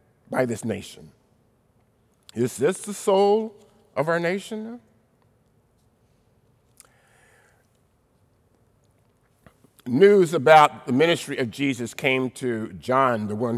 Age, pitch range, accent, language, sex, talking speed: 50-69, 120-185 Hz, American, English, male, 95 wpm